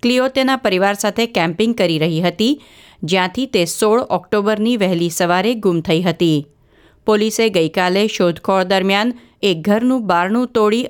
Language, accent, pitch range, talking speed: Gujarati, native, 180-240 Hz, 115 wpm